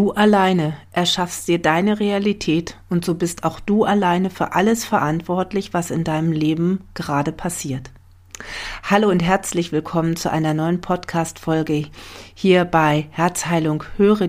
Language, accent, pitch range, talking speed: German, German, 155-190 Hz, 140 wpm